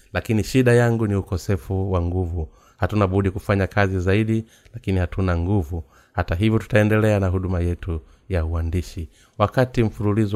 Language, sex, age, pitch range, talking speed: Swahili, male, 30-49, 90-105 Hz, 145 wpm